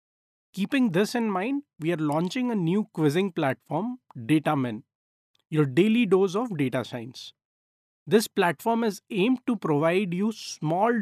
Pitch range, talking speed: 150-205 Hz, 140 wpm